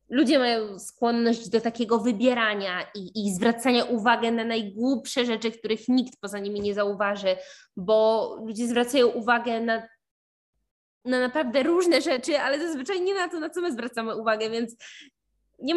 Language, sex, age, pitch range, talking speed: Polish, female, 20-39, 185-240 Hz, 150 wpm